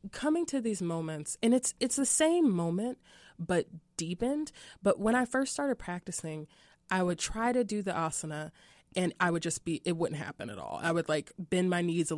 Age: 20-39